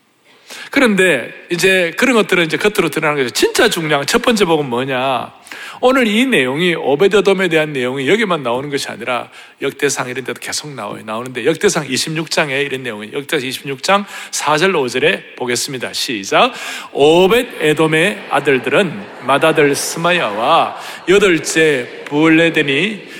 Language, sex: Korean, male